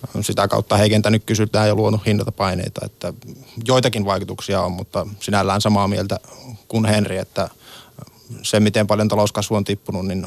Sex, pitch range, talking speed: male, 105-120 Hz, 145 wpm